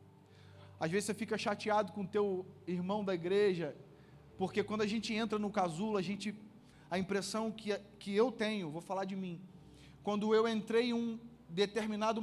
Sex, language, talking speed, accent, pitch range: male, Portuguese, 175 wpm, Brazilian, 145-205 Hz